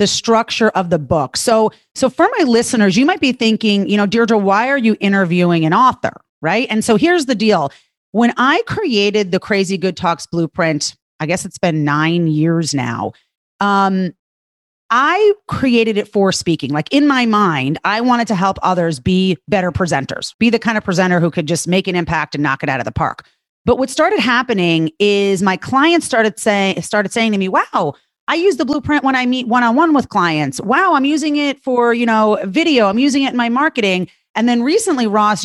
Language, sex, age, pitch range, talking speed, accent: English, female, 30-49, 185-250 Hz, 205 wpm, American